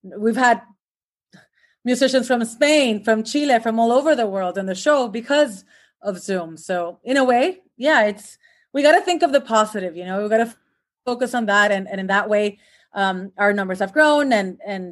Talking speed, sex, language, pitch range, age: 210 wpm, female, English, 195-240 Hz, 30-49